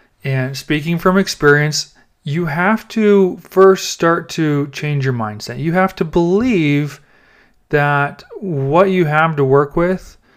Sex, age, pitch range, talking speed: male, 30-49, 135-175 Hz, 140 wpm